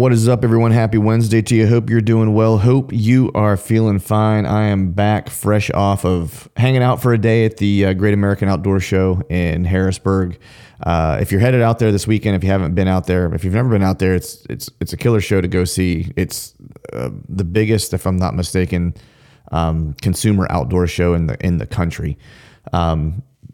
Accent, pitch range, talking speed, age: American, 90-110 Hz, 215 wpm, 30-49